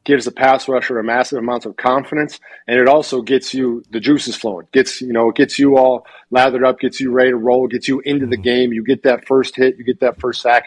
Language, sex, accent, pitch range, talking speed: English, male, American, 115-130 Hz, 260 wpm